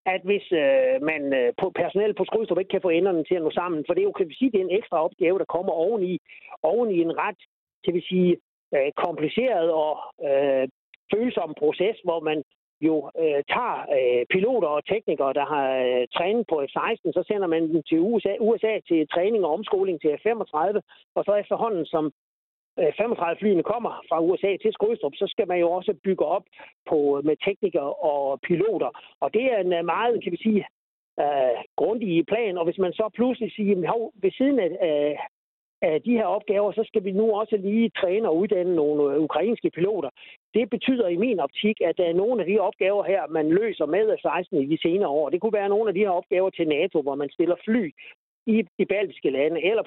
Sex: male